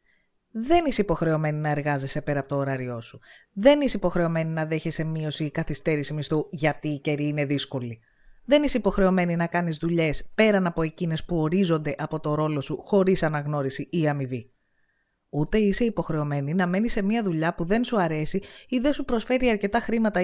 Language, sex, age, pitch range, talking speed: Greek, female, 20-39, 150-220 Hz, 180 wpm